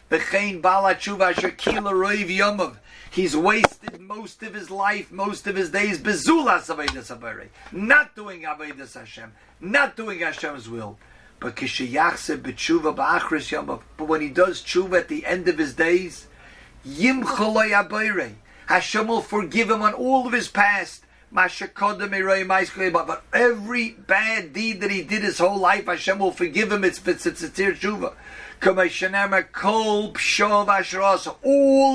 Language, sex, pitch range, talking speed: English, male, 175-210 Hz, 100 wpm